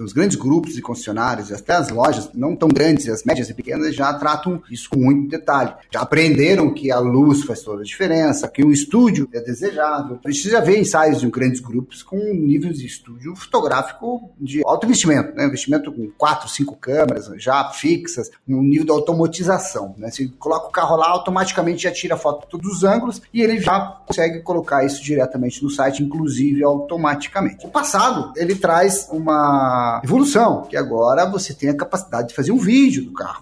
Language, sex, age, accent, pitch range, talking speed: Portuguese, male, 30-49, Brazilian, 145-230 Hz, 190 wpm